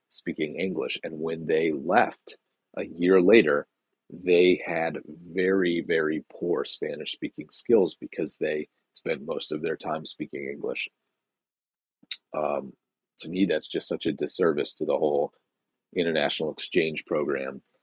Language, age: English, 40-59